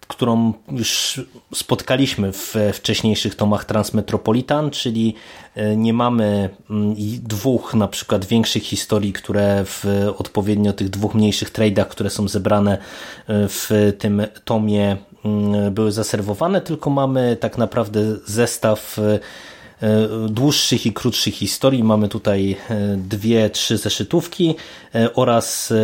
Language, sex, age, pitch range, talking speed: Polish, male, 30-49, 105-115 Hz, 105 wpm